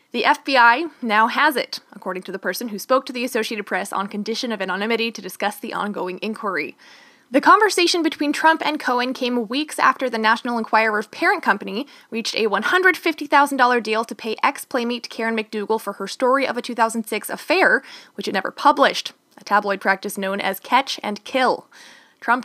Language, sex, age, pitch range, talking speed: English, female, 20-39, 210-285 Hz, 180 wpm